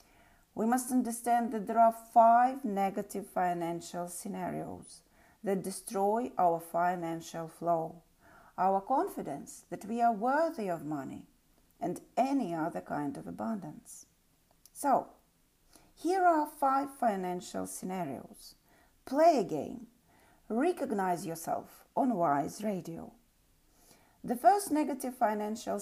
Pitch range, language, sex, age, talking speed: 175-240 Hz, English, female, 40-59, 110 wpm